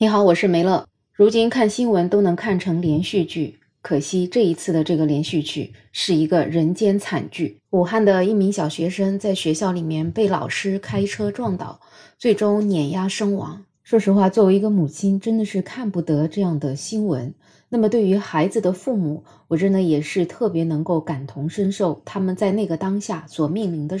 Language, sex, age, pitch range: Chinese, female, 20-39, 170-215 Hz